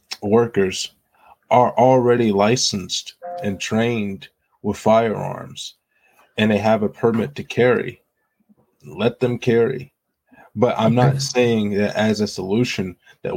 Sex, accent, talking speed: male, American, 120 wpm